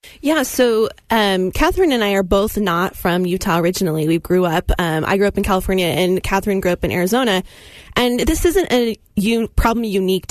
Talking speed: 200 wpm